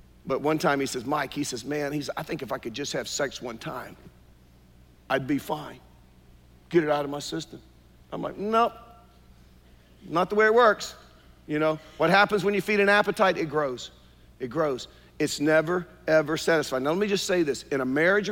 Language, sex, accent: English, male, American